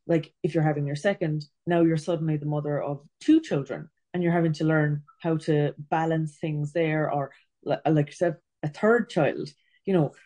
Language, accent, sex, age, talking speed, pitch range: English, Irish, female, 20-39, 185 wpm, 150-180 Hz